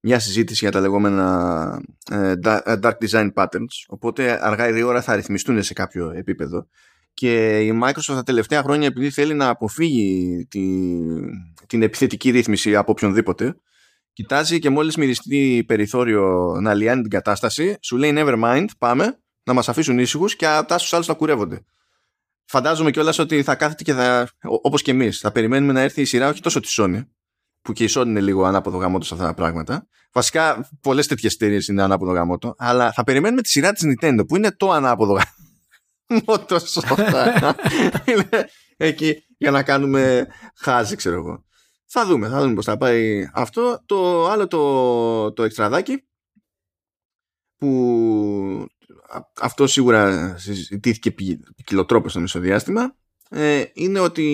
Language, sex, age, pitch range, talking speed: Greek, male, 20-39, 100-145 Hz, 150 wpm